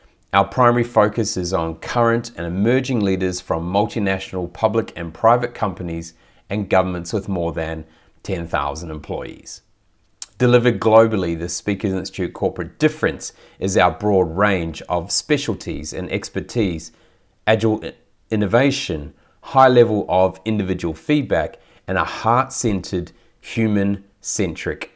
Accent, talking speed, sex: Australian, 115 wpm, male